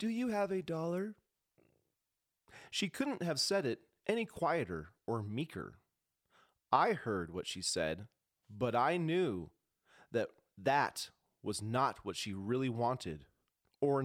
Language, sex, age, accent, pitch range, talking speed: English, male, 30-49, American, 110-170 Hz, 130 wpm